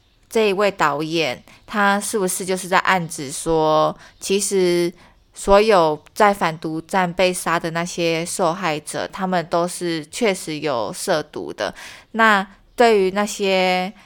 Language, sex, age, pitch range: Chinese, female, 20-39, 165-200 Hz